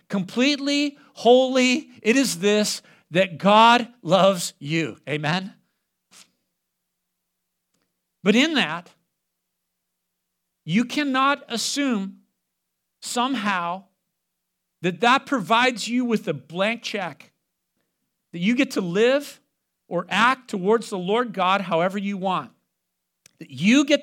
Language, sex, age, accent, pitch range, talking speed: English, male, 50-69, American, 180-255 Hz, 105 wpm